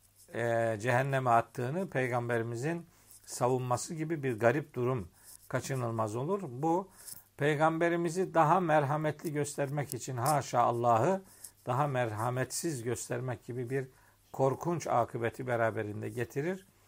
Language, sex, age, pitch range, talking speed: Turkish, male, 50-69, 115-150 Hz, 95 wpm